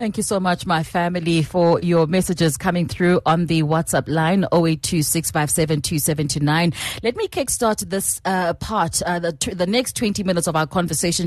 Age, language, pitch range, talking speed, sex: 30-49, English, 170-215 Hz, 165 wpm, female